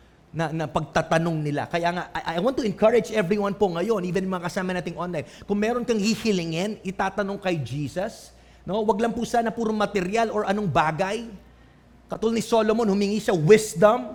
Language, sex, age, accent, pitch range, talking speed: English, male, 30-49, Filipino, 215-280 Hz, 180 wpm